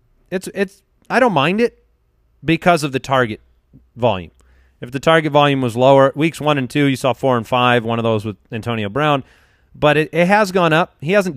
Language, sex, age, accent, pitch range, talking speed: English, male, 30-49, American, 115-155 Hz, 210 wpm